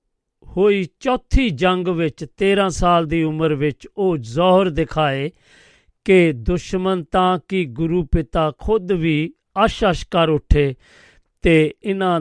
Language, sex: Punjabi, male